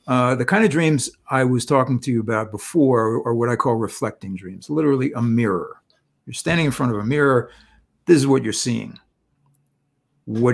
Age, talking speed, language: 60-79, 200 wpm, English